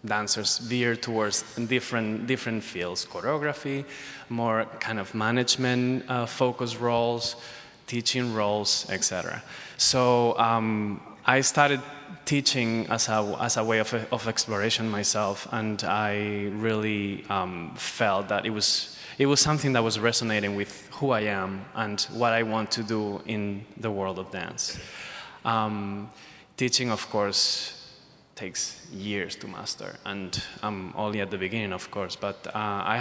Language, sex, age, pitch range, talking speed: English, male, 20-39, 105-120 Hz, 145 wpm